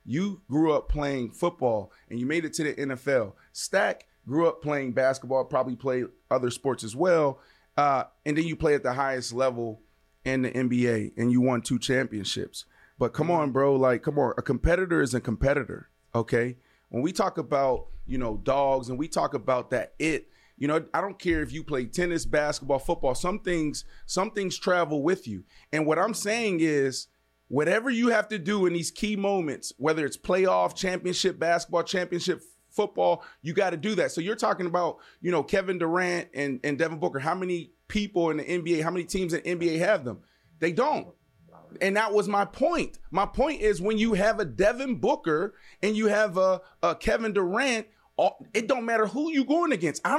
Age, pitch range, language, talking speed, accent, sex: 30-49, 135-200 Hz, English, 200 wpm, American, male